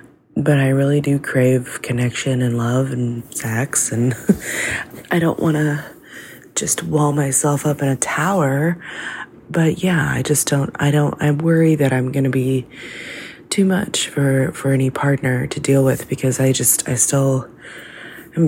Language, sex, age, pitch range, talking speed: English, female, 20-39, 130-155 Hz, 165 wpm